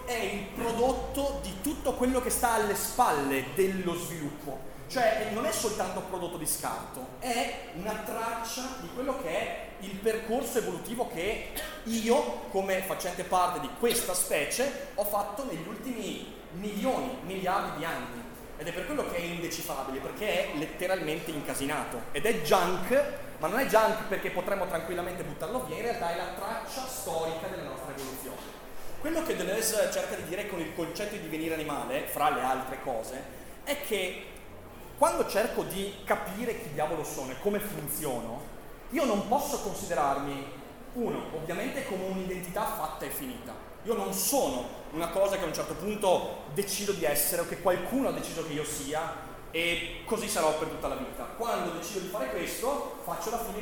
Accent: native